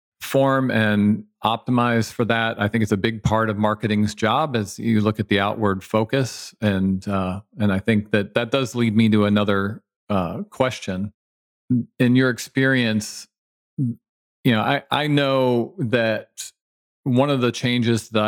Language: English